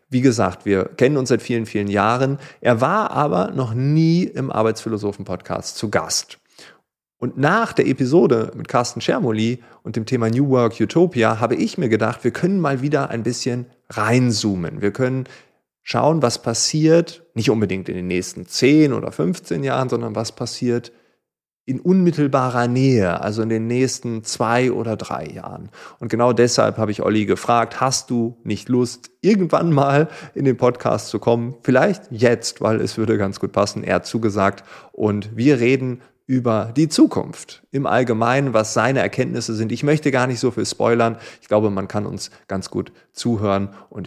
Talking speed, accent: 175 wpm, German